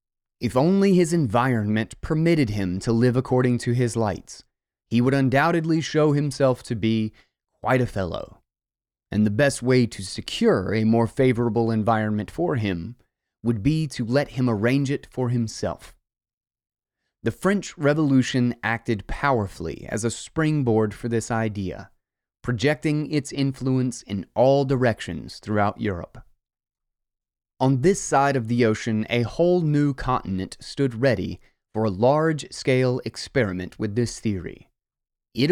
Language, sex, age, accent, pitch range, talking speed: English, male, 30-49, American, 110-140 Hz, 140 wpm